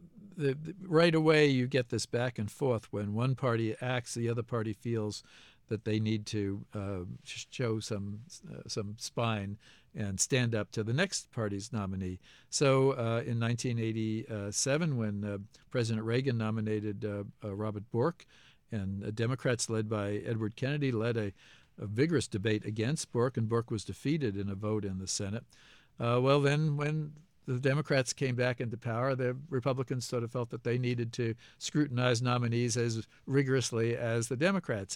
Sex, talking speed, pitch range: male, 165 wpm, 105-130 Hz